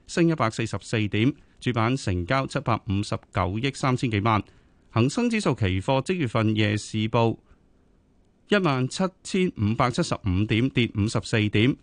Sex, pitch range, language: male, 105-150 Hz, Chinese